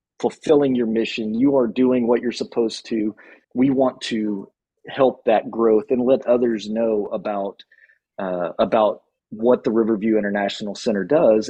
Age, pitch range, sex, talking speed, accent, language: 30-49, 105-125 Hz, male, 150 wpm, American, English